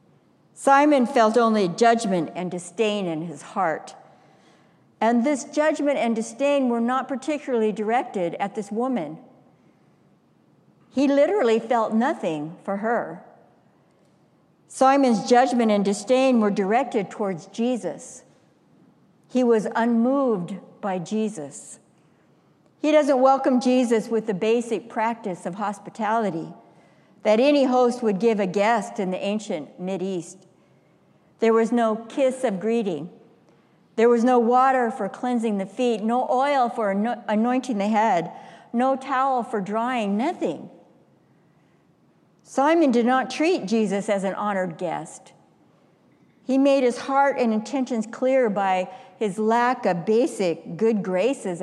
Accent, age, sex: American, 60-79, female